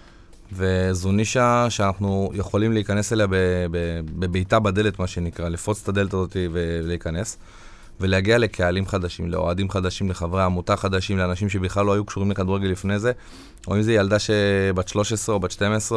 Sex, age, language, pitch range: male, 20-39, Hebrew, 95-110 Hz